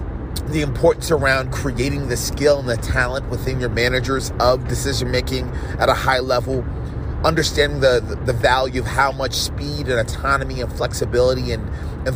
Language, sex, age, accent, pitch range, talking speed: English, male, 30-49, American, 110-130 Hz, 160 wpm